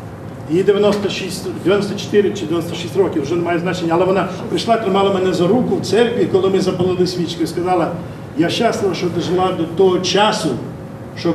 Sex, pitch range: male, 140-185 Hz